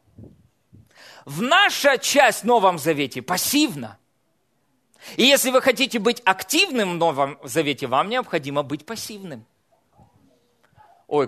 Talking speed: 105 wpm